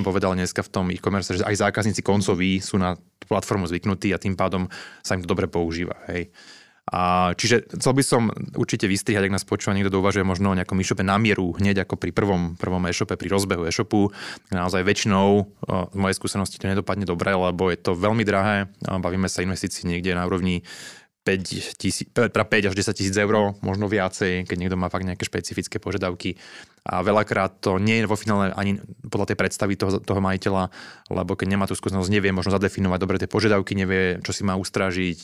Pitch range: 95-100 Hz